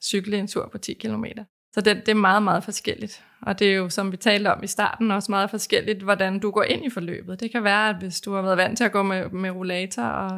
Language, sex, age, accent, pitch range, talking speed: Danish, female, 20-39, native, 195-220 Hz, 275 wpm